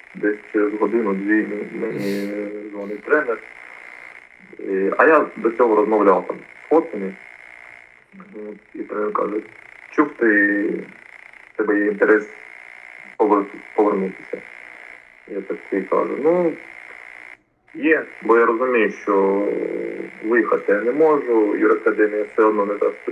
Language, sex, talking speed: Ukrainian, male, 110 wpm